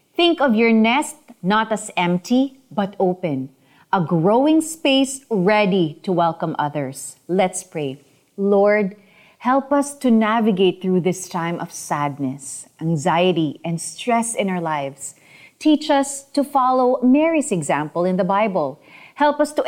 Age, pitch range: 30-49, 185-295 Hz